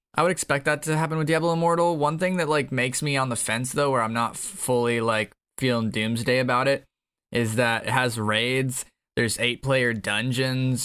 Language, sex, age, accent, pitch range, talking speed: English, male, 20-39, American, 110-135 Hz, 205 wpm